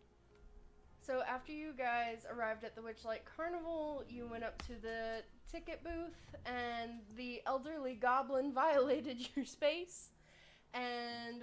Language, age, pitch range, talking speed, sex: English, 10-29, 220-285 Hz, 125 wpm, female